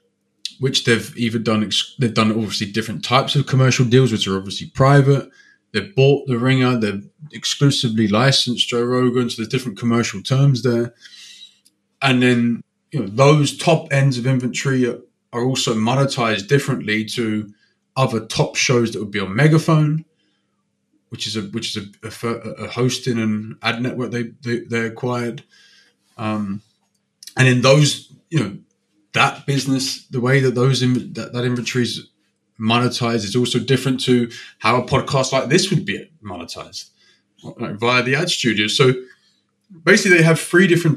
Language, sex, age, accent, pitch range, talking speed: English, male, 20-39, British, 110-135 Hz, 160 wpm